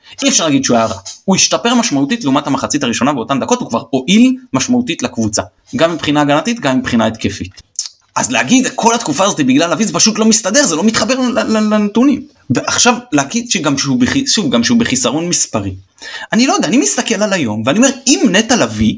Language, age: Hebrew, 30-49